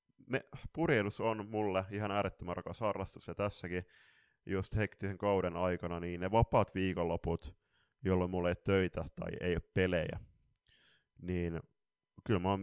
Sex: male